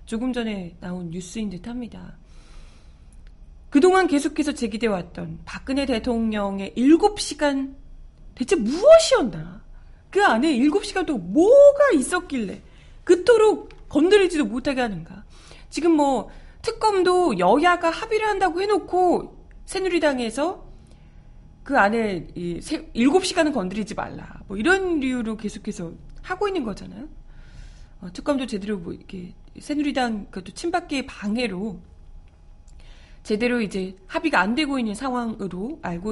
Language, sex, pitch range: Korean, female, 195-325 Hz